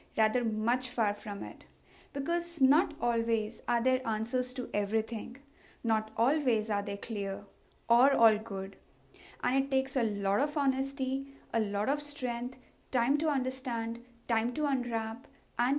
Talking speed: 150 wpm